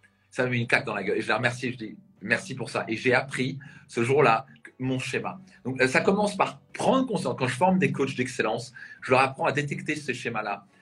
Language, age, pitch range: French, 40-59, 130-175 Hz